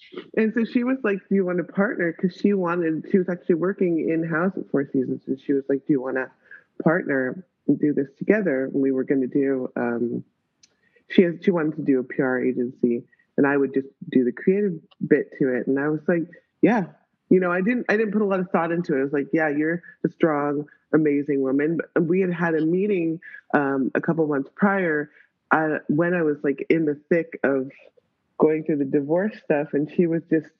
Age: 30-49